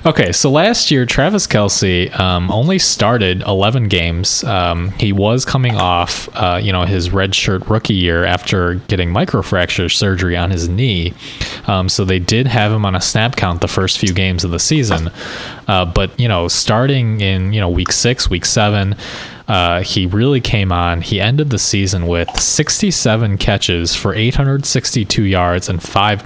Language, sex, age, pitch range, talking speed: English, male, 20-39, 90-115 Hz, 180 wpm